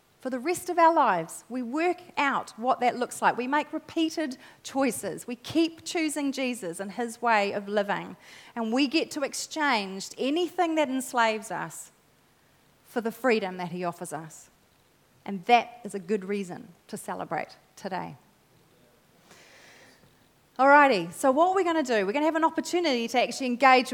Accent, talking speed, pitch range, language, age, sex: Australian, 170 wpm, 215-285 Hz, English, 30-49, female